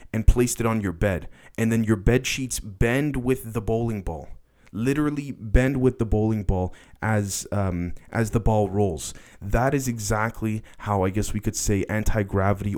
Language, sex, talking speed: English, male, 180 wpm